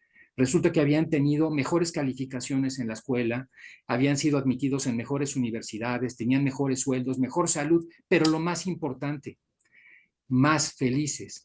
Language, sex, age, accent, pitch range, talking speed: Spanish, male, 50-69, Mexican, 125-150 Hz, 135 wpm